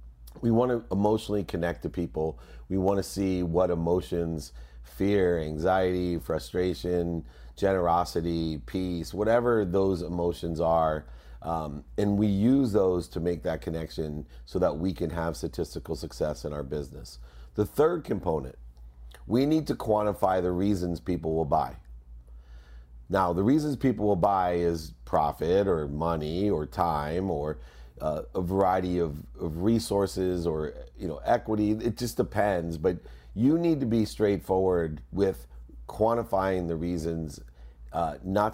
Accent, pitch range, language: American, 75-95 Hz, English